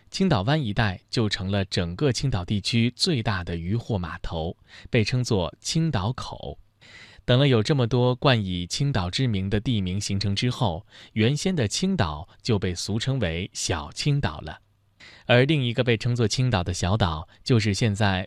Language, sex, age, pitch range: Chinese, male, 20-39, 95-130 Hz